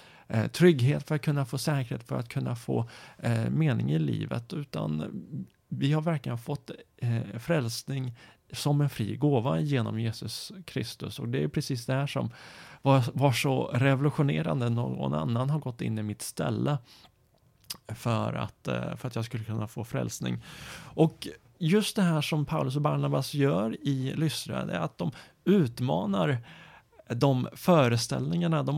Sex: male